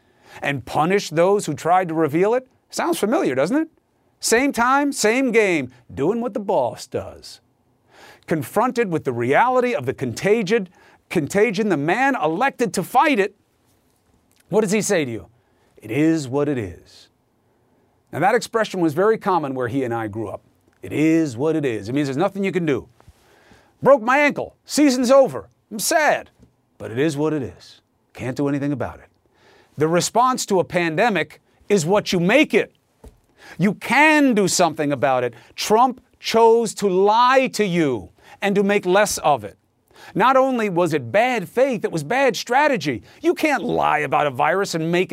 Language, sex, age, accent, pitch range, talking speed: English, male, 40-59, American, 150-245 Hz, 180 wpm